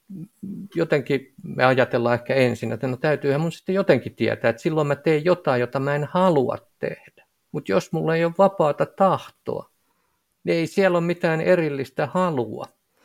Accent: native